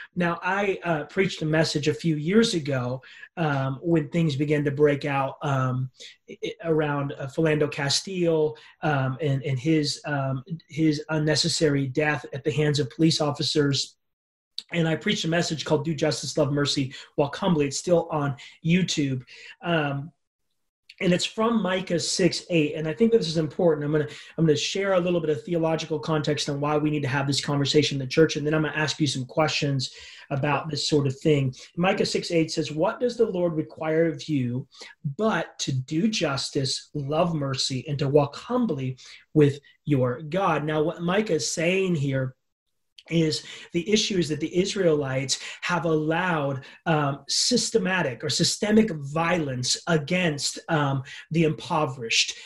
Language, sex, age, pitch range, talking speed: English, male, 30-49, 145-170 Hz, 170 wpm